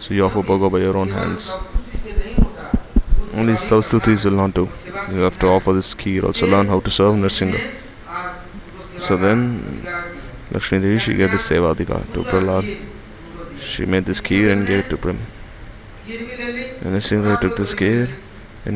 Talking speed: 155 wpm